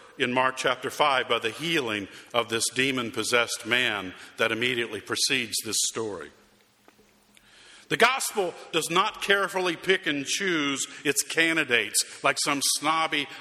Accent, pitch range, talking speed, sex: American, 135-175 Hz, 130 wpm, male